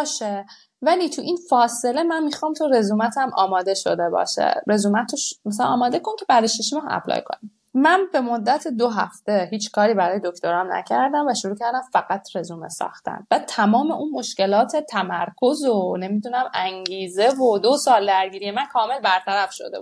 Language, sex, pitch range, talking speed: Persian, female, 200-280 Hz, 165 wpm